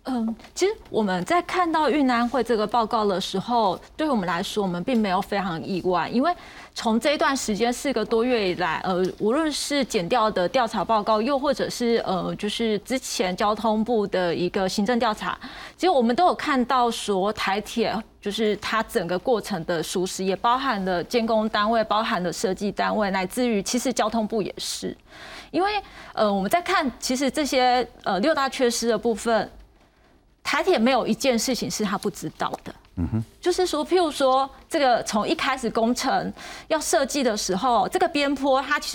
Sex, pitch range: female, 210-280 Hz